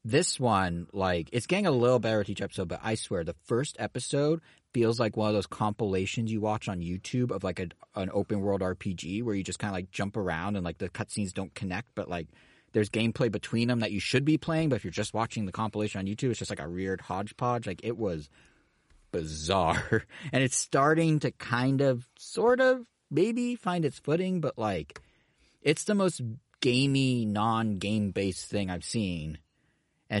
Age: 30-49